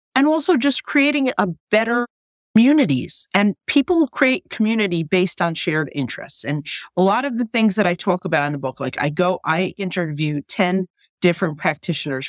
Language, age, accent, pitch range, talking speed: English, 40-59, American, 150-205 Hz, 175 wpm